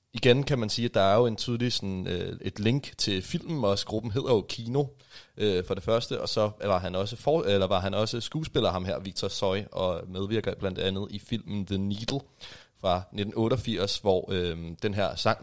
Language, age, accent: Danish, 30-49, native